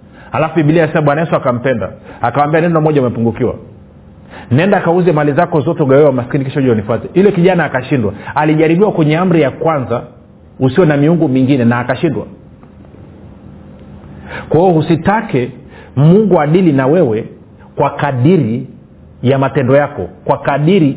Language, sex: Swahili, male